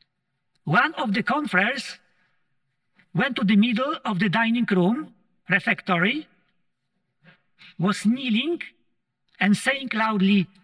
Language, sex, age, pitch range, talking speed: English, male, 50-69, 165-200 Hz, 100 wpm